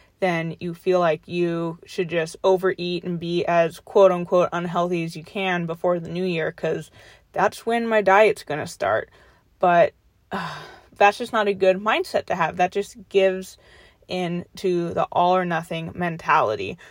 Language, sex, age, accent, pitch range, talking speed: English, female, 20-39, American, 170-200 Hz, 160 wpm